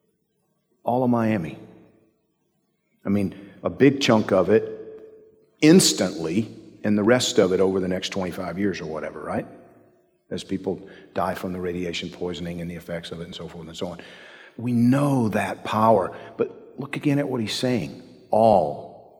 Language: English